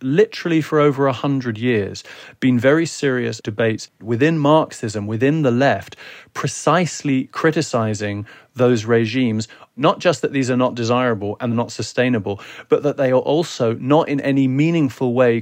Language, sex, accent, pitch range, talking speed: English, male, British, 115-140 Hz, 150 wpm